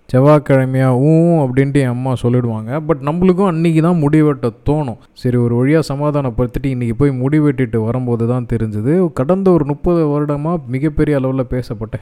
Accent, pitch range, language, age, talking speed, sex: native, 120-150 Hz, Tamil, 20-39, 140 wpm, male